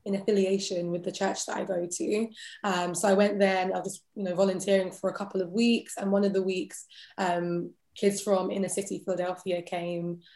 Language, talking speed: English, 215 wpm